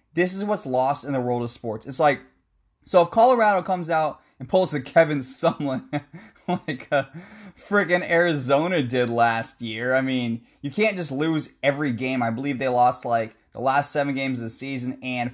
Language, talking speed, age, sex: English, 190 wpm, 20-39, male